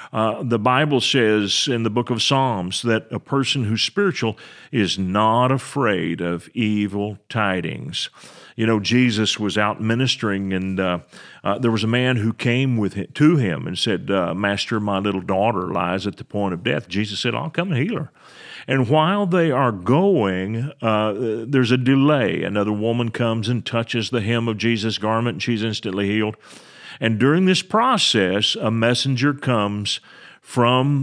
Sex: male